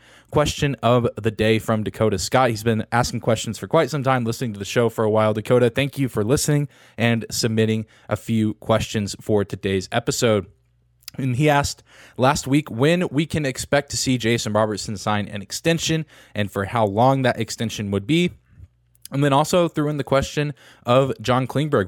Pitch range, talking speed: 110-135 Hz, 190 wpm